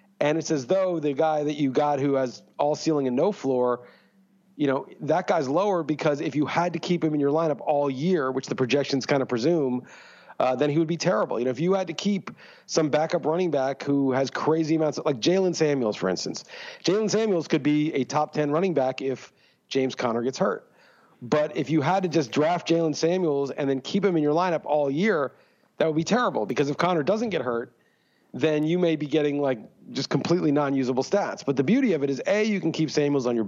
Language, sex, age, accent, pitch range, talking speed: English, male, 40-59, American, 140-175 Hz, 235 wpm